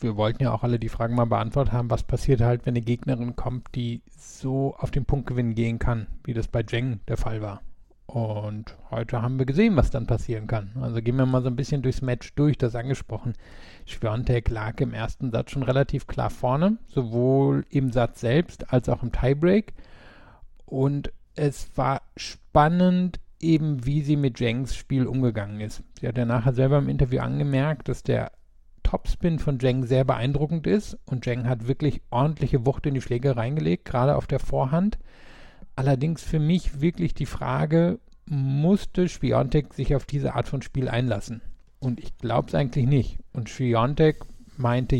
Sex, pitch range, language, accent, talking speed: male, 120-145 Hz, German, German, 180 wpm